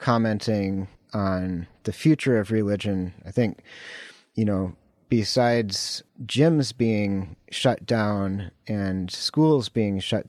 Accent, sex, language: American, male, English